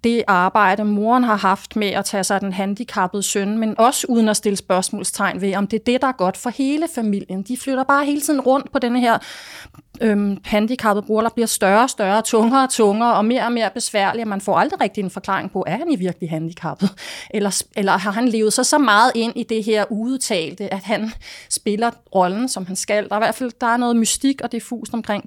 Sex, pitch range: female, 195-235 Hz